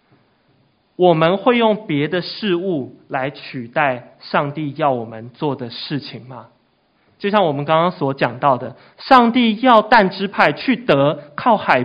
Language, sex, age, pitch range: Chinese, male, 20-39, 135-200 Hz